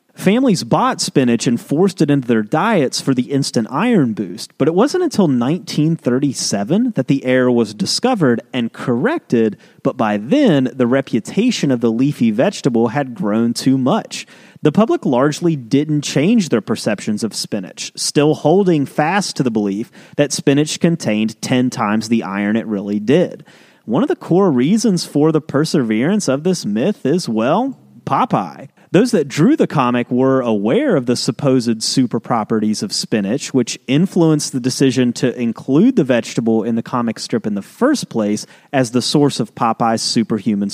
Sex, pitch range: male, 120-175 Hz